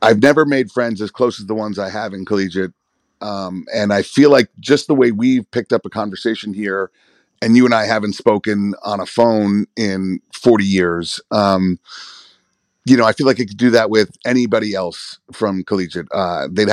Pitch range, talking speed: 100-125 Hz, 200 wpm